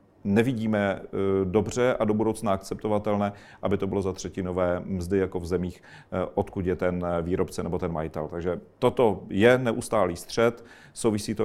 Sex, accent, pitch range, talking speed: male, native, 95-105 Hz, 150 wpm